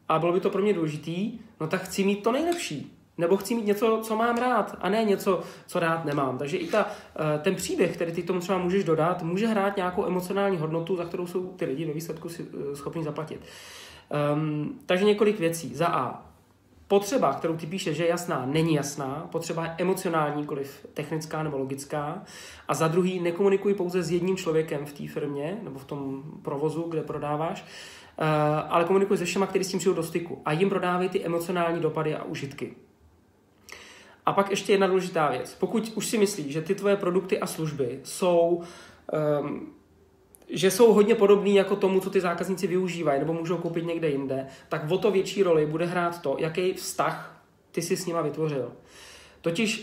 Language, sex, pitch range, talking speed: Czech, male, 155-195 Hz, 185 wpm